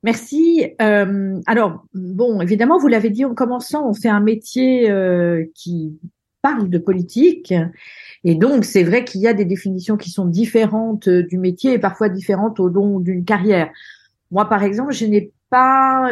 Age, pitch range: 50-69, 180-230 Hz